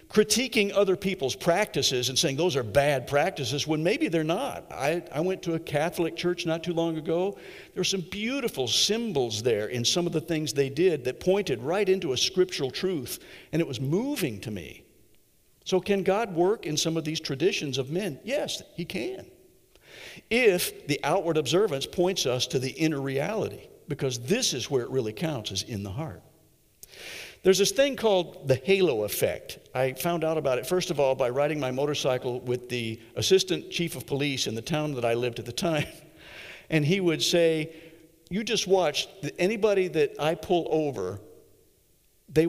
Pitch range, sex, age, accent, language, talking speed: 140-185 Hz, male, 60-79, American, English, 190 wpm